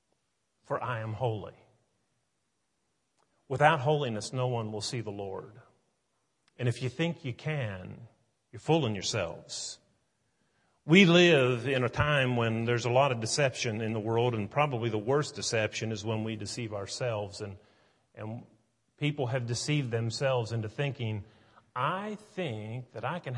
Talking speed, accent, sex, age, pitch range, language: 150 wpm, American, male, 40-59, 115-165 Hz, English